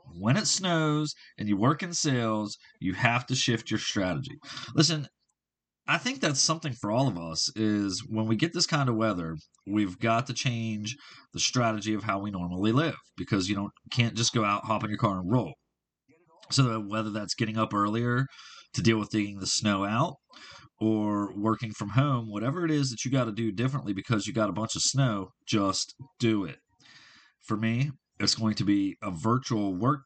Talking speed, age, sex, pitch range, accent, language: 200 wpm, 30-49, male, 105-130 Hz, American, English